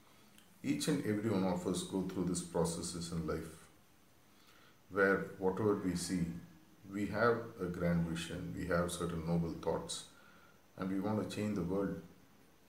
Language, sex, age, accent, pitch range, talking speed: English, male, 50-69, Indian, 85-100 Hz, 155 wpm